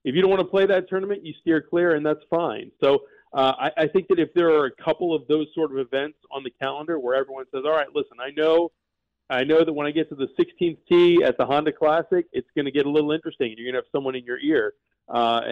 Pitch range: 135-175 Hz